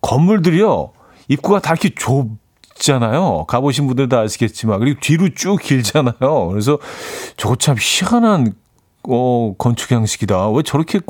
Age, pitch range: 40-59, 110-155 Hz